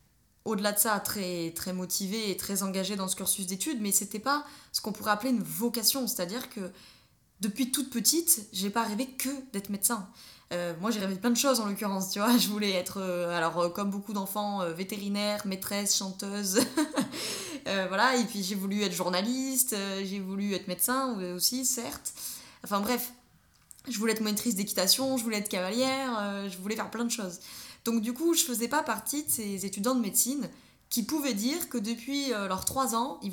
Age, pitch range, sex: 20-39, 195-245 Hz, female